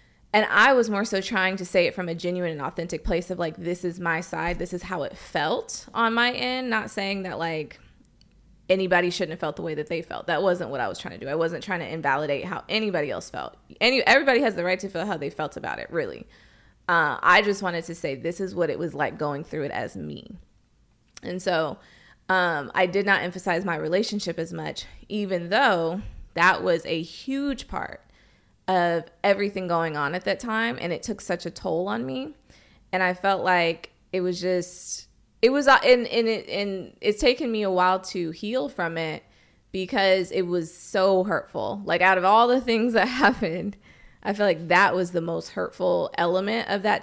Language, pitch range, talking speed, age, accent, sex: English, 170-230 Hz, 215 wpm, 20-39, American, female